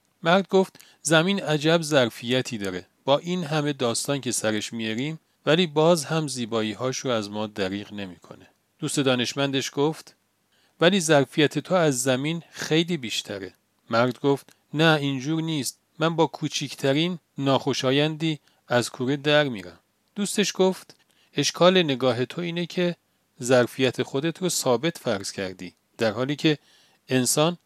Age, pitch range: 40-59, 110-160 Hz